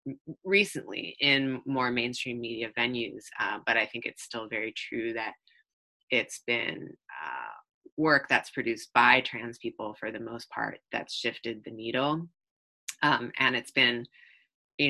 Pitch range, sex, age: 120-155 Hz, female, 30-49